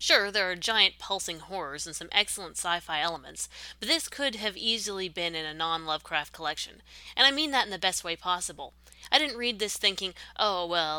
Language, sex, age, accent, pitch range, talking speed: English, female, 30-49, American, 165-205 Hz, 200 wpm